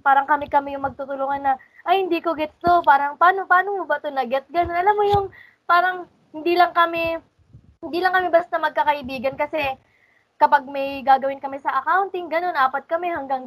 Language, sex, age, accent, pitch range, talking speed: Filipino, female, 20-39, native, 265-325 Hz, 180 wpm